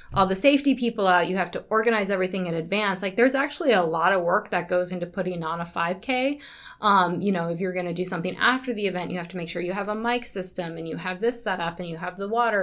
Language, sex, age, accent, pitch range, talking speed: English, female, 20-39, American, 175-220 Hz, 280 wpm